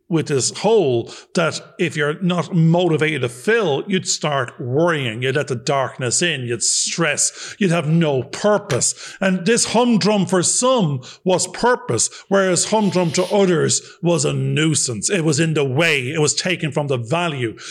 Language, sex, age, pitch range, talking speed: English, male, 50-69, 145-200 Hz, 170 wpm